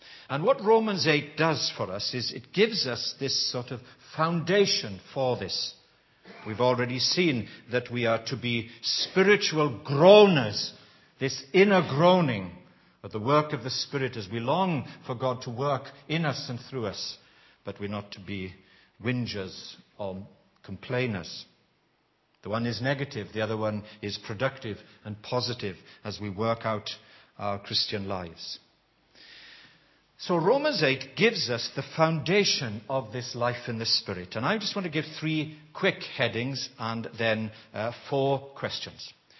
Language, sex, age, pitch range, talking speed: English, male, 60-79, 115-155 Hz, 155 wpm